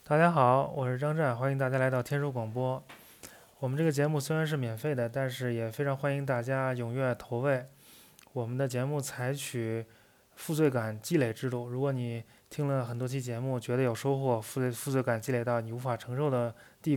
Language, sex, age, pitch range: Chinese, male, 20-39, 125-150 Hz